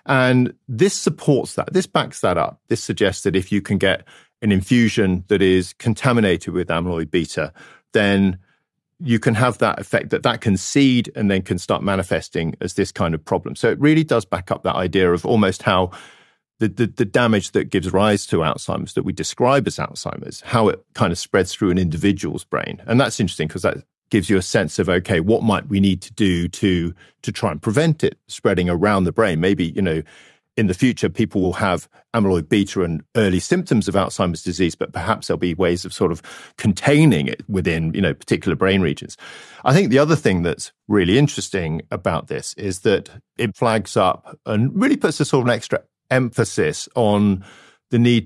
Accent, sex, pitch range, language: British, male, 95-120 Hz, English